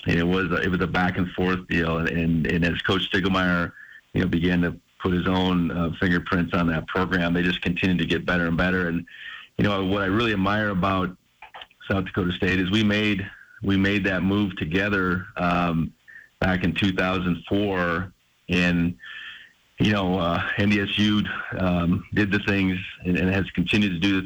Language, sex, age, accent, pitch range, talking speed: English, male, 40-59, American, 85-95 Hz, 185 wpm